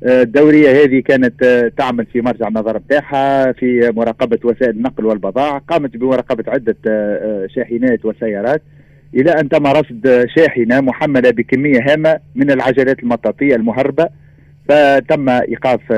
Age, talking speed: 40-59, 120 wpm